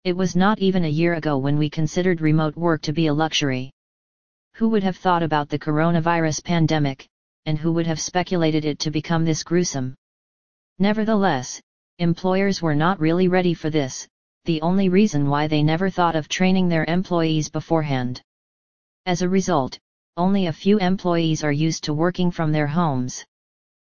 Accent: American